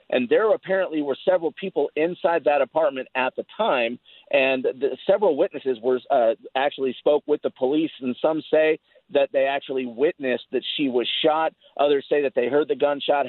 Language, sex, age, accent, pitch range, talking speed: English, male, 50-69, American, 130-175 Hz, 185 wpm